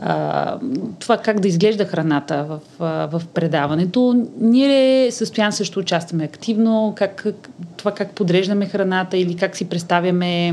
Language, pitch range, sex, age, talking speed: Bulgarian, 170-210 Hz, female, 30-49, 125 wpm